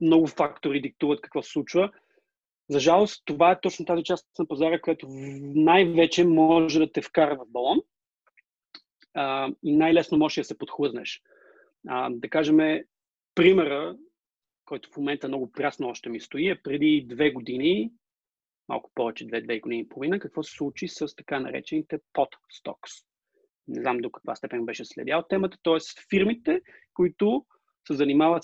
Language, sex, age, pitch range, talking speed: Bulgarian, male, 30-49, 150-235 Hz, 155 wpm